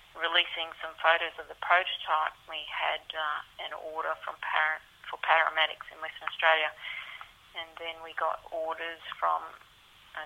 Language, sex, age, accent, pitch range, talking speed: English, female, 40-59, Australian, 155-170 Hz, 145 wpm